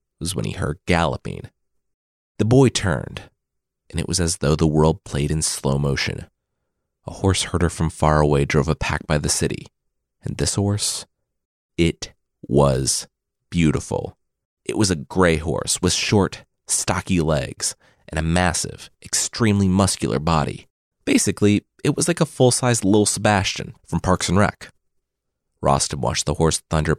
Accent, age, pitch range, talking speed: American, 30-49, 80-110 Hz, 155 wpm